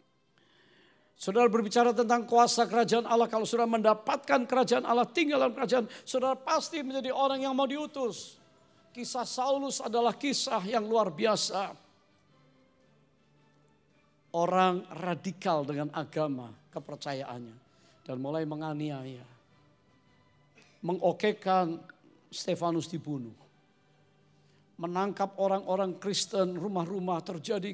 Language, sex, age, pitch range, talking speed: English, male, 50-69, 155-215 Hz, 95 wpm